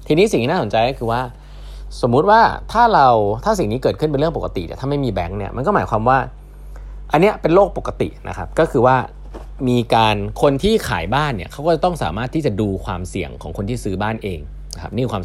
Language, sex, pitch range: Thai, male, 90-130 Hz